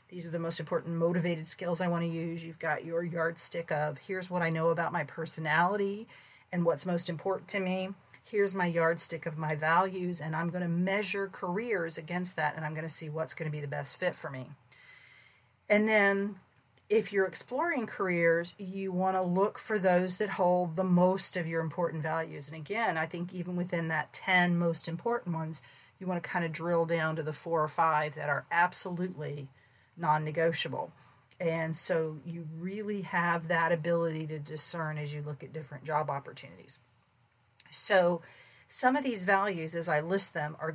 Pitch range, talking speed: 155-180 Hz, 190 wpm